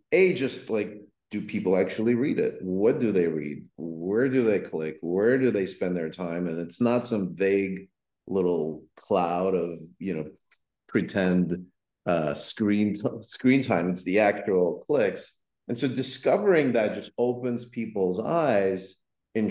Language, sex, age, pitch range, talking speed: English, male, 40-59, 90-120 Hz, 155 wpm